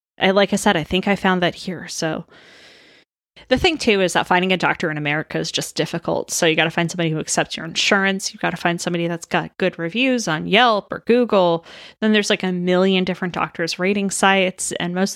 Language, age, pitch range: English, 20-39, 170-200 Hz